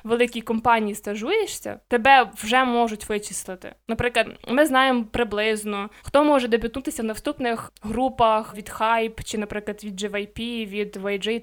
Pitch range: 210-260 Hz